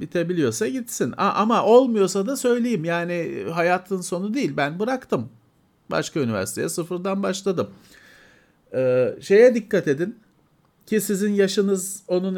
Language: Turkish